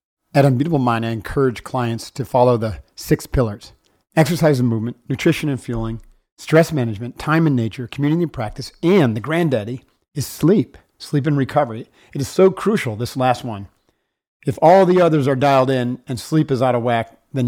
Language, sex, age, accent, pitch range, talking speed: English, male, 40-59, American, 120-150 Hz, 185 wpm